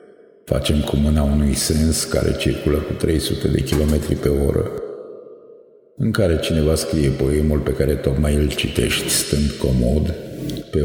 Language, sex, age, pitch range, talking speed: Romanian, male, 50-69, 70-90 Hz, 145 wpm